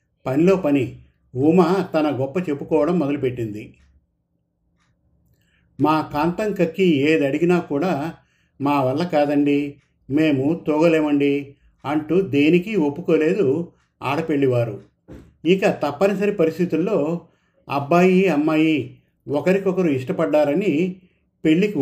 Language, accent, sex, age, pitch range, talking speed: Telugu, native, male, 50-69, 140-170 Hz, 85 wpm